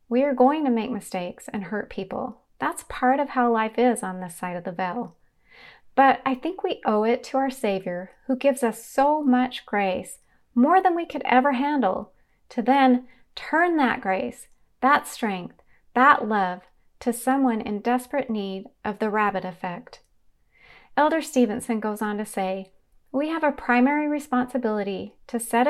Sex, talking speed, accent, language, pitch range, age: female, 170 wpm, American, English, 205-260 Hz, 30-49